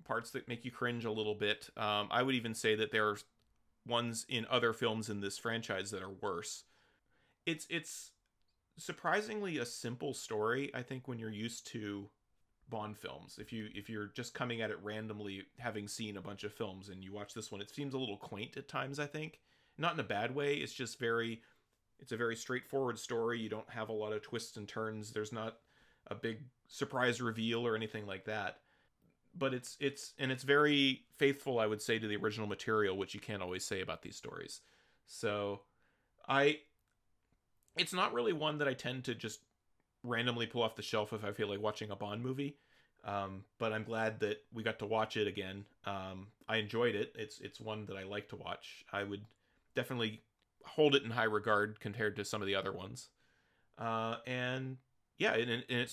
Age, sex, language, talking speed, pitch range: 30-49, male, English, 205 wpm, 105-125 Hz